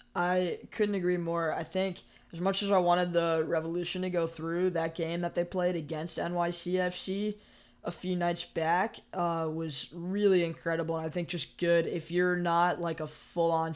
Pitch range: 155-170 Hz